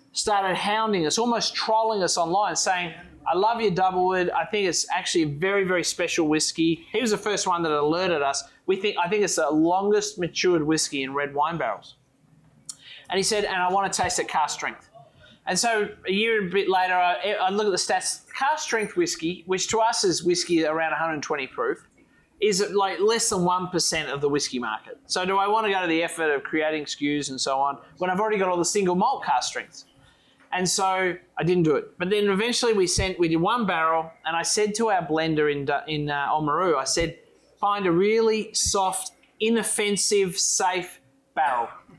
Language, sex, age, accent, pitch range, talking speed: English, male, 30-49, Australian, 155-205 Hz, 210 wpm